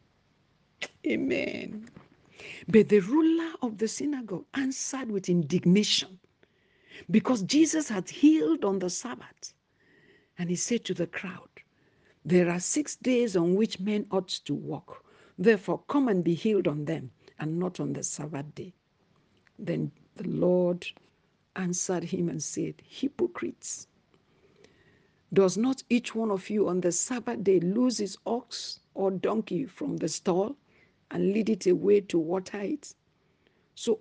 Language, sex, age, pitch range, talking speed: English, female, 60-79, 175-235 Hz, 140 wpm